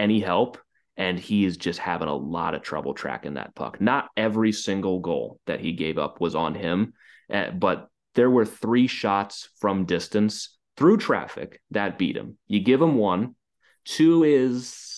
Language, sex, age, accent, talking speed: English, male, 30-49, American, 170 wpm